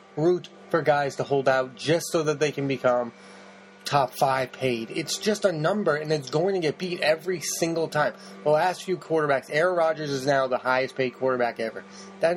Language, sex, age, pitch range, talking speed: English, male, 20-39, 130-160 Hz, 205 wpm